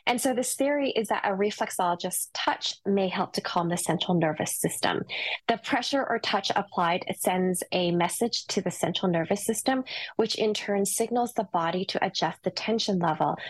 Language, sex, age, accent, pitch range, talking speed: English, female, 20-39, American, 175-210 Hz, 180 wpm